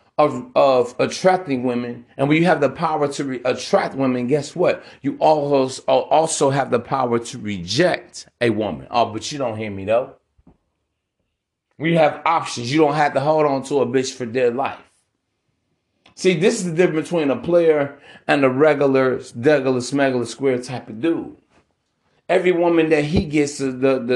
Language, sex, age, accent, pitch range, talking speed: English, male, 30-49, American, 120-155 Hz, 180 wpm